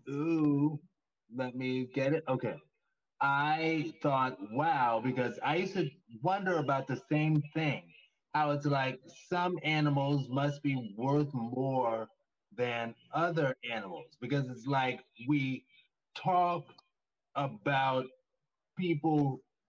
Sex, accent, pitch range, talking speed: male, American, 125-155 Hz, 115 wpm